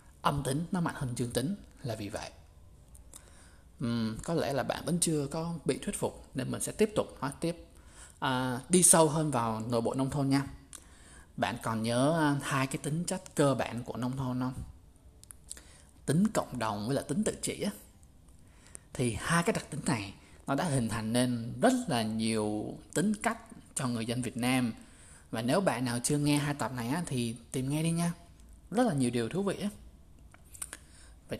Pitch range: 90-150 Hz